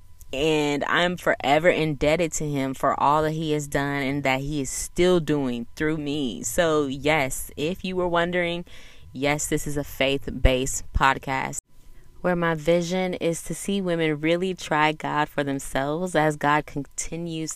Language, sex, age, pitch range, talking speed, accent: English, female, 20-39, 135-160 Hz, 165 wpm, American